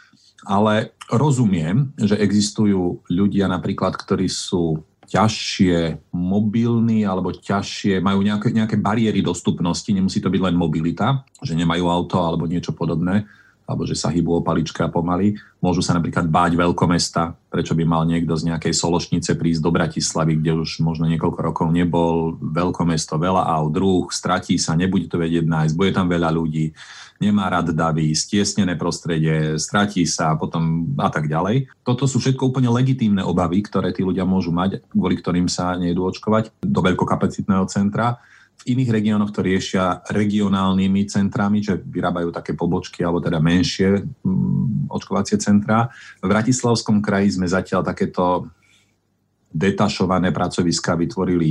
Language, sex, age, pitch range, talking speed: Slovak, male, 40-59, 85-105 Hz, 145 wpm